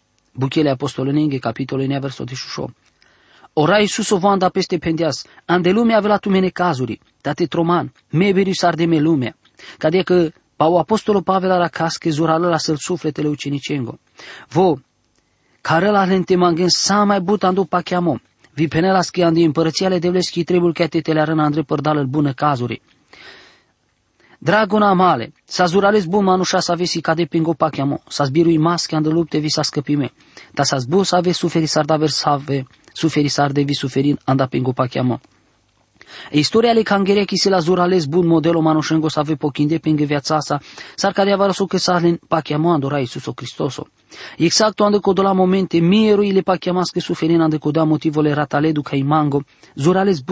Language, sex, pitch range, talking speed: English, male, 150-185 Hz, 160 wpm